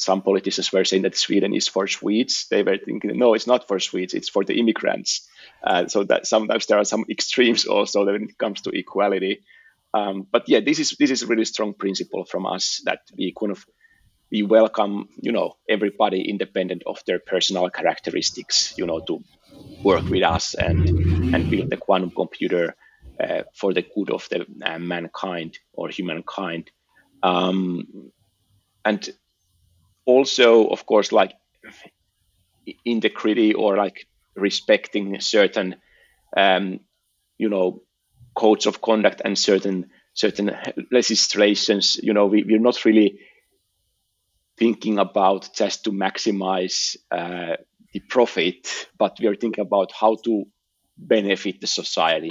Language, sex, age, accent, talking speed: English, male, 30-49, Finnish, 150 wpm